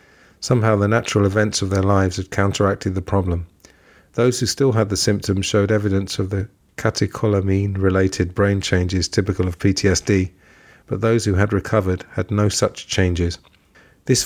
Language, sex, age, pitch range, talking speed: English, male, 40-59, 95-105 Hz, 155 wpm